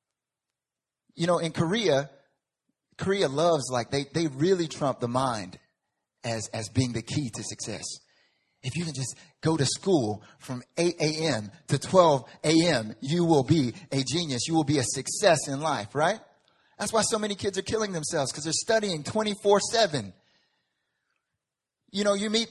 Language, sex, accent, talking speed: English, male, American, 165 wpm